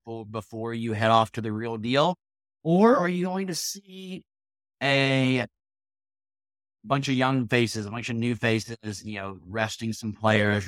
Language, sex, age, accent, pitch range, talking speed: English, male, 30-49, American, 100-120 Hz, 165 wpm